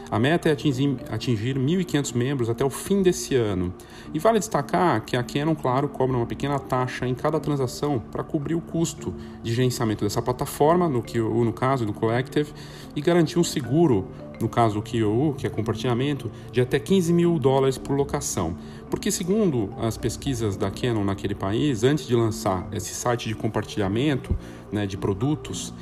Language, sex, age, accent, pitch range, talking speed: Portuguese, male, 40-59, Brazilian, 110-140 Hz, 170 wpm